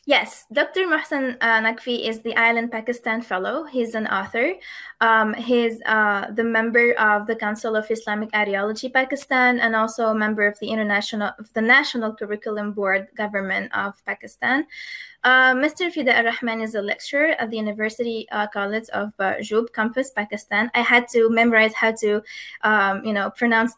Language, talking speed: English, 170 wpm